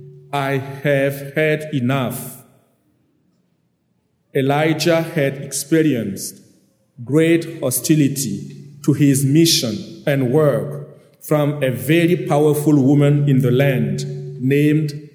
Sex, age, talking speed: male, 50-69, 90 wpm